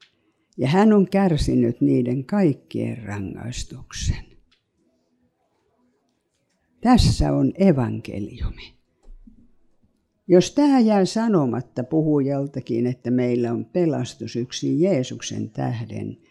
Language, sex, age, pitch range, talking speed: Finnish, female, 60-79, 120-185 Hz, 75 wpm